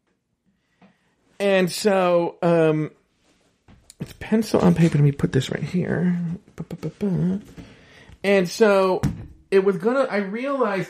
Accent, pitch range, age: American, 140-200 Hz, 40-59